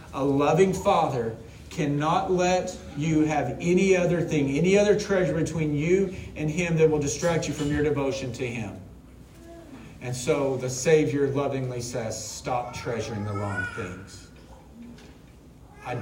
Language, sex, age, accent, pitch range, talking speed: English, male, 40-59, American, 120-155 Hz, 140 wpm